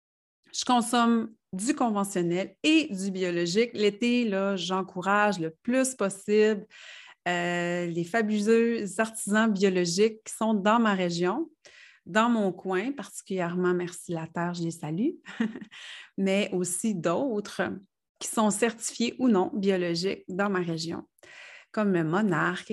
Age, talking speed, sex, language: 30-49, 125 wpm, female, French